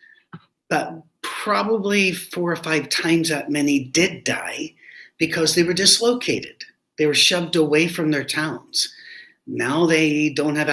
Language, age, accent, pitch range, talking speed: English, 60-79, American, 140-180 Hz, 140 wpm